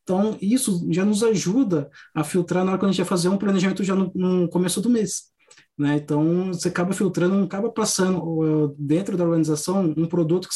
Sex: male